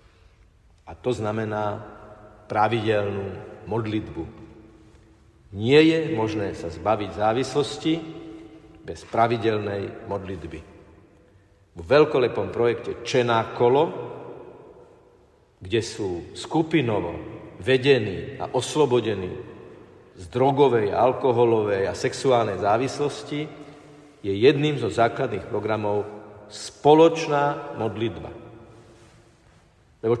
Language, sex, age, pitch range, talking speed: Slovak, male, 50-69, 105-145 Hz, 75 wpm